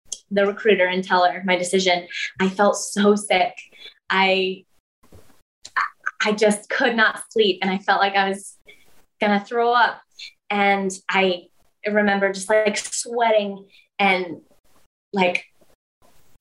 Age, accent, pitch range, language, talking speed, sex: 20-39, American, 190-215 Hz, English, 125 wpm, female